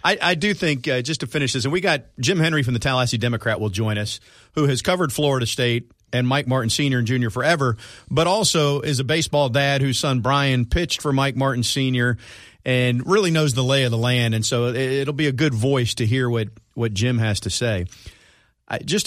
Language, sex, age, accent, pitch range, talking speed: English, male, 40-59, American, 105-135 Hz, 225 wpm